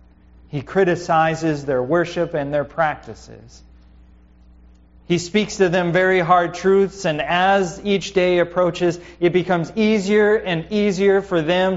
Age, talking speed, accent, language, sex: 30-49, 135 wpm, American, English, male